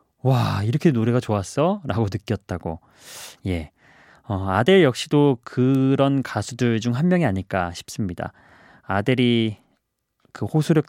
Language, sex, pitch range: Korean, male, 105-150 Hz